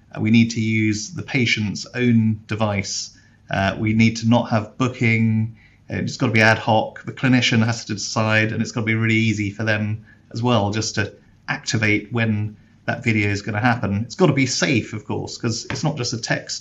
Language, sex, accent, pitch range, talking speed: English, male, British, 105-120 Hz, 215 wpm